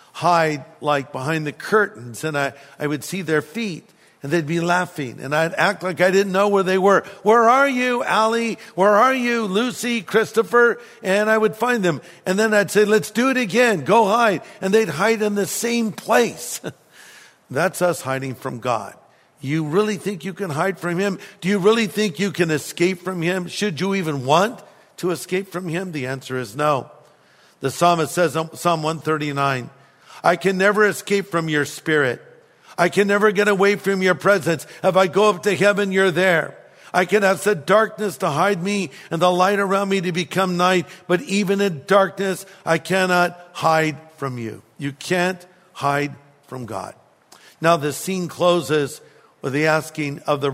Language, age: English, 50-69